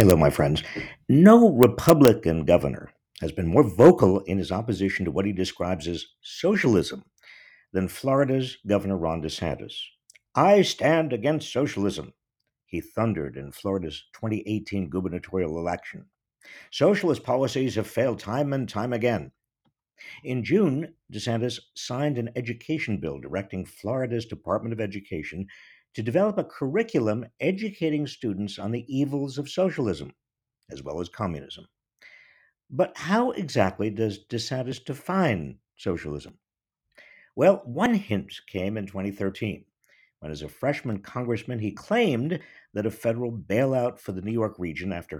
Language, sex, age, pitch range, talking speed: English, male, 50-69, 95-140 Hz, 130 wpm